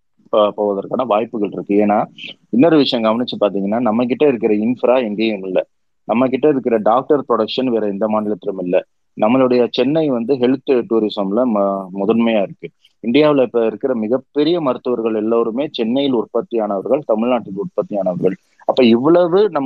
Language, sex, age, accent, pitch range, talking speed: Tamil, male, 30-49, native, 100-130 Hz, 115 wpm